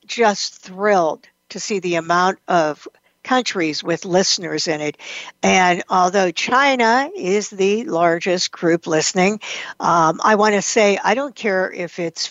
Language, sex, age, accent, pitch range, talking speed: English, female, 60-79, American, 180-235 Hz, 145 wpm